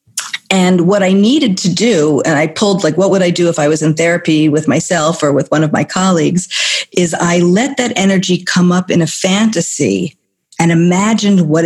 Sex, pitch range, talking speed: female, 165-200 Hz, 205 wpm